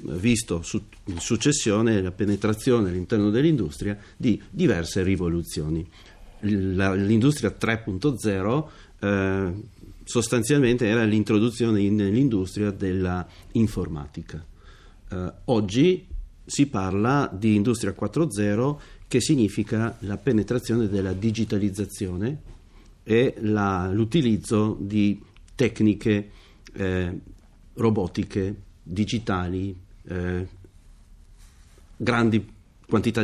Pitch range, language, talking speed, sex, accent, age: 95-110 Hz, Italian, 75 wpm, male, native, 50-69